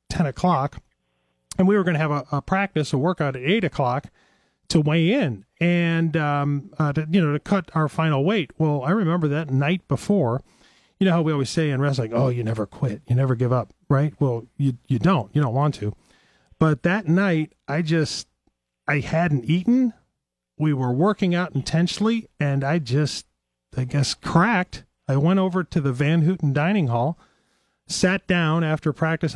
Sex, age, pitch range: male, 40-59, 135-175 Hz